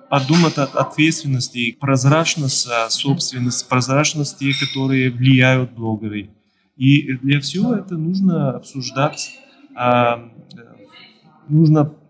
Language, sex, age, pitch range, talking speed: Ukrainian, male, 20-39, 125-160 Hz, 90 wpm